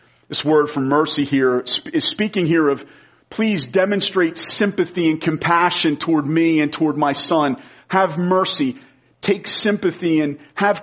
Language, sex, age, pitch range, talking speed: English, male, 40-59, 125-155 Hz, 145 wpm